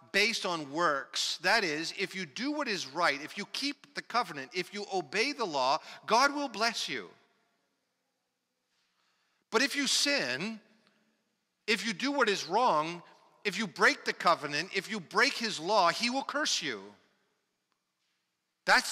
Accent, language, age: American, English, 50-69